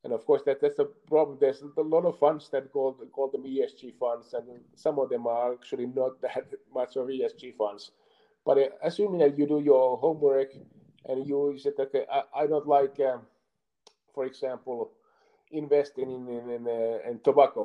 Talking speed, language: 190 wpm, English